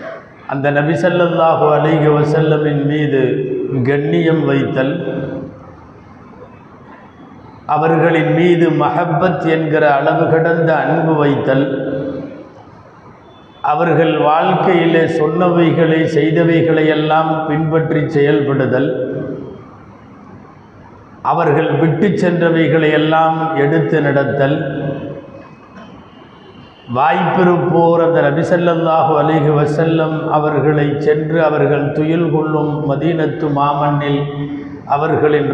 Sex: male